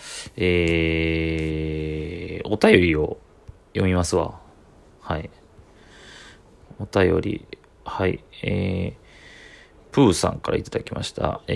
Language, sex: Japanese, male